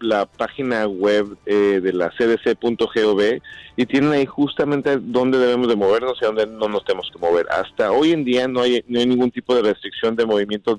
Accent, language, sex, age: Mexican, Spanish, male, 40-59